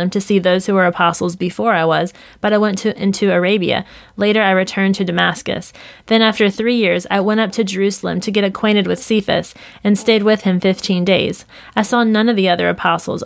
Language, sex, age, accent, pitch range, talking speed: English, female, 20-39, American, 185-215 Hz, 215 wpm